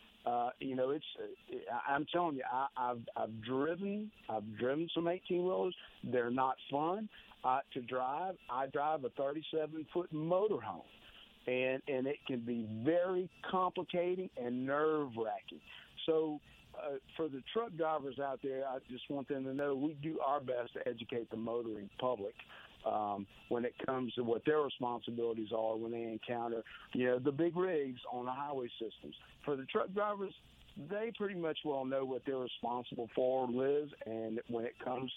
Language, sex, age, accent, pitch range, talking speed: English, male, 50-69, American, 120-150 Hz, 170 wpm